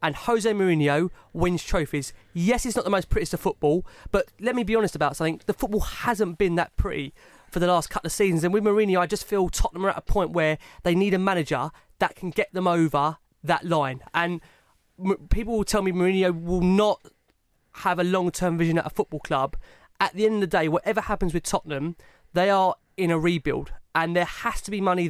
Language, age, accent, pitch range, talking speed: English, 20-39, British, 160-195 Hz, 220 wpm